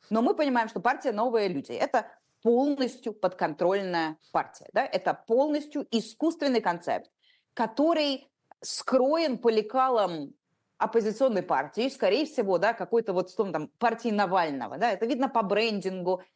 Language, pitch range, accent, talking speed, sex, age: Russian, 175-240 Hz, native, 135 wpm, female, 20-39